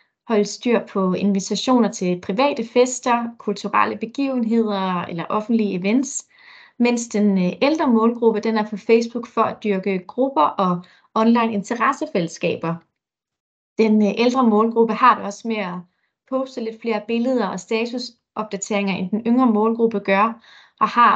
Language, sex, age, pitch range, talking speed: English, female, 30-49, 200-250 Hz, 135 wpm